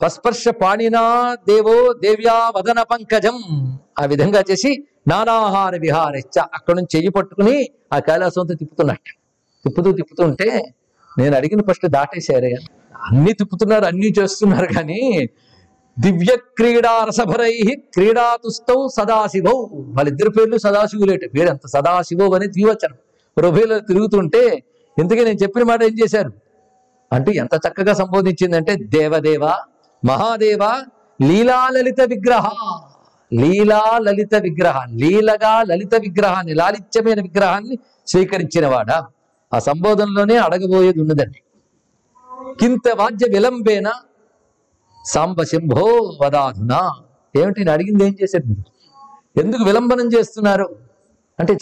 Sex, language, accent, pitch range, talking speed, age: male, Telugu, native, 170-225 Hz, 95 wpm, 50-69